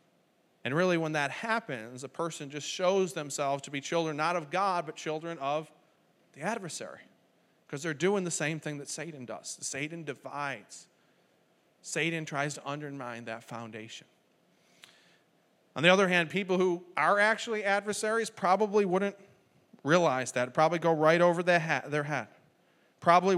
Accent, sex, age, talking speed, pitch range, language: American, male, 40-59, 150 wpm, 140-180 Hz, English